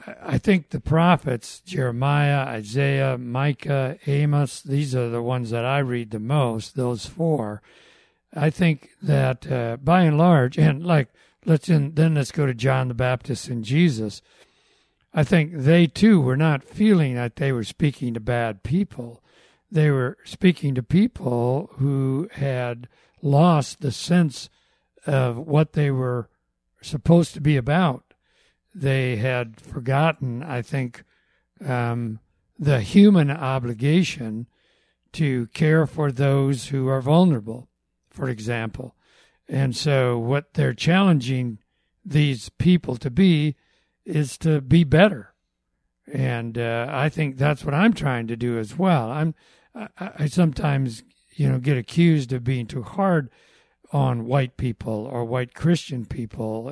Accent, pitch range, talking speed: American, 120-155 Hz, 140 wpm